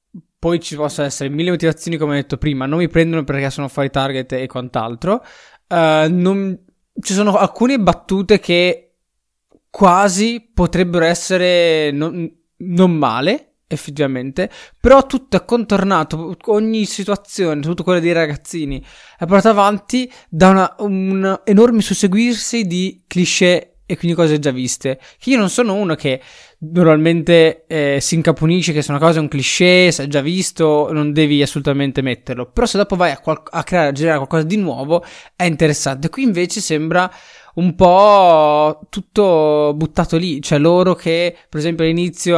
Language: Italian